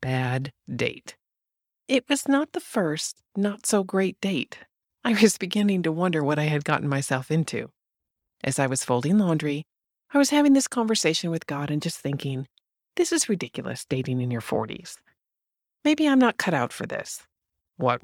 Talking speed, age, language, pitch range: 175 wpm, 40-59, English, 140-220 Hz